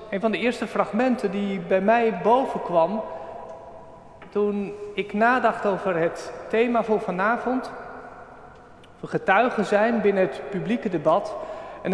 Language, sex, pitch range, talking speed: Dutch, male, 180-220 Hz, 130 wpm